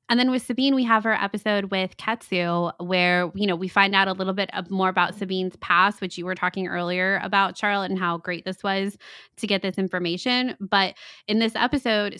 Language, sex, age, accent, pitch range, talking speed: English, female, 20-39, American, 180-215 Hz, 215 wpm